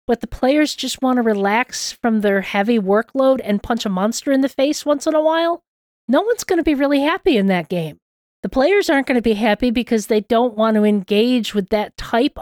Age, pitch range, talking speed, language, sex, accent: 40-59, 220-265 Hz, 230 wpm, English, female, American